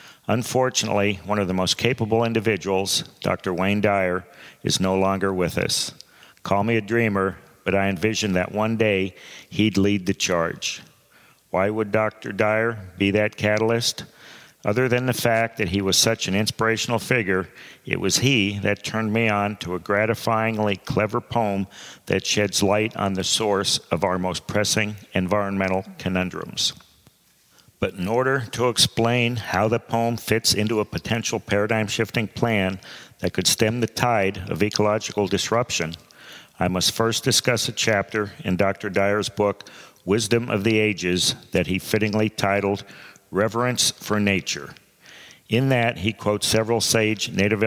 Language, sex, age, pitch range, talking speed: English, male, 50-69, 100-115 Hz, 150 wpm